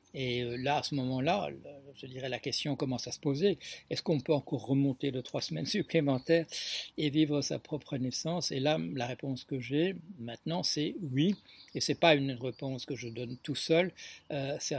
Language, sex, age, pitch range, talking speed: French, male, 60-79, 125-155 Hz, 195 wpm